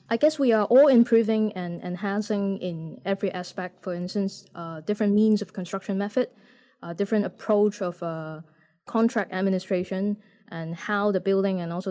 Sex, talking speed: female, 160 wpm